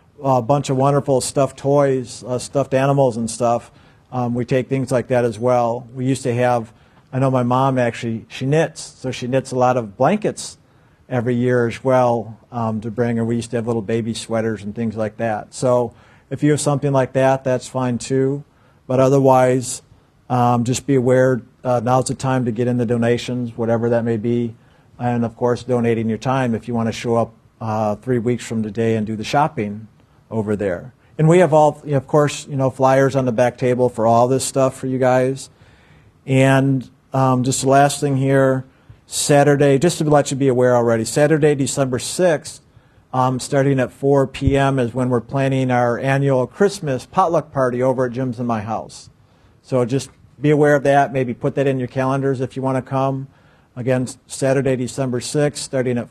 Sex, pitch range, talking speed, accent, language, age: male, 120-135 Hz, 200 wpm, American, English, 50-69